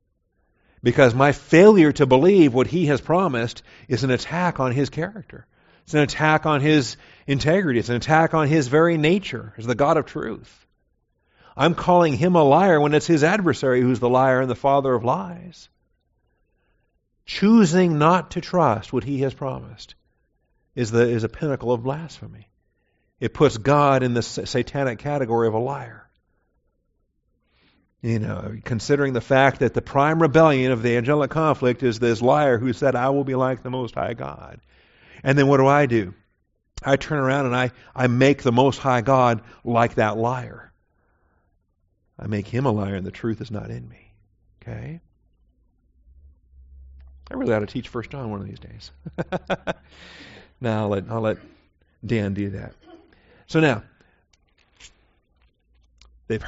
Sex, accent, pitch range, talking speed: male, American, 105-145 Hz, 165 wpm